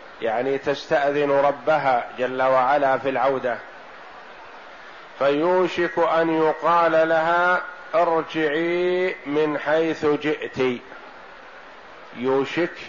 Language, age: Arabic, 50-69